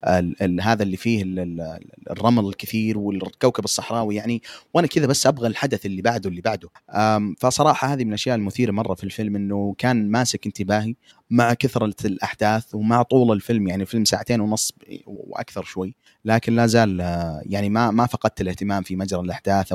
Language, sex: Arabic, male